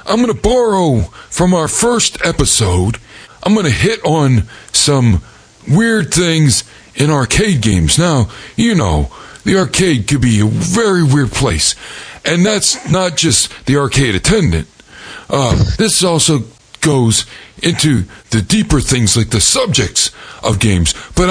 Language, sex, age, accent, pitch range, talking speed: English, male, 60-79, American, 115-180 Hz, 145 wpm